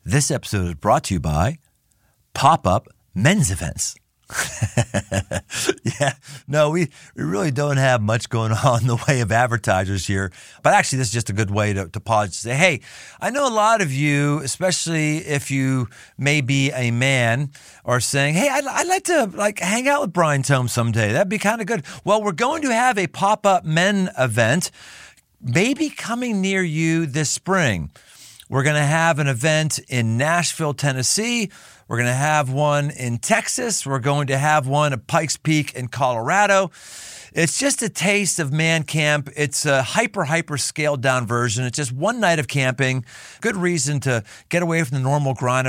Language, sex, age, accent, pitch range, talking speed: English, male, 40-59, American, 125-180 Hz, 185 wpm